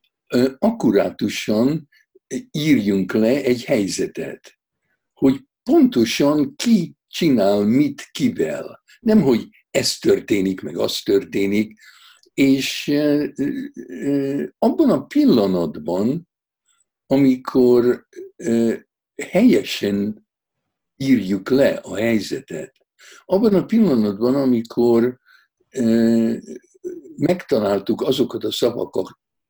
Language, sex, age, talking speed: Hungarian, male, 60-79, 75 wpm